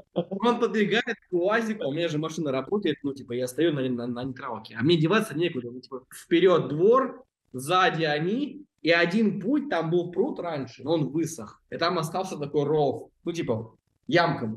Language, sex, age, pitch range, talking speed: Russian, male, 20-39, 135-190 Hz, 175 wpm